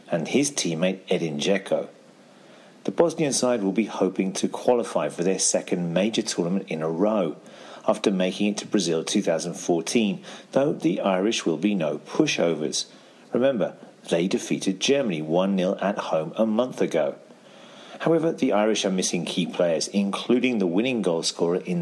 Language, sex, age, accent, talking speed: English, male, 40-59, British, 155 wpm